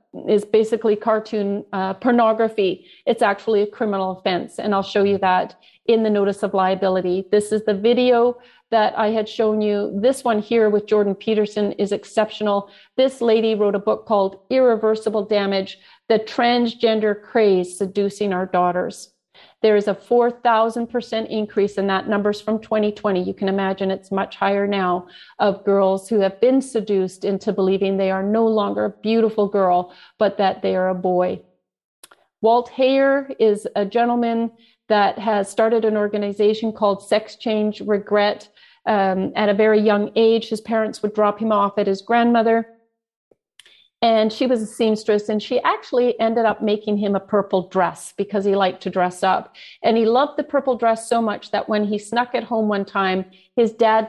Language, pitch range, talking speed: English, 195-225 Hz, 175 wpm